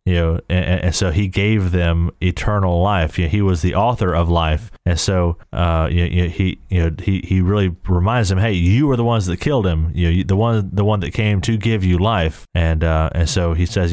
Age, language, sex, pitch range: 30-49, English, male, 85-100 Hz